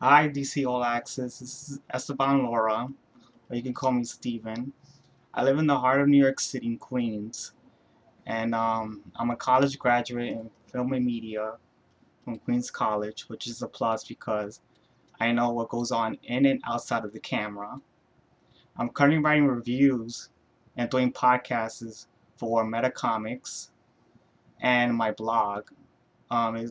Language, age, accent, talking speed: English, 20-39, American, 155 wpm